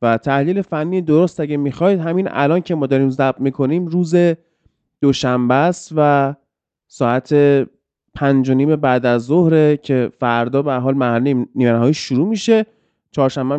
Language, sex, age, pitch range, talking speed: Persian, male, 30-49, 135-185 Hz, 150 wpm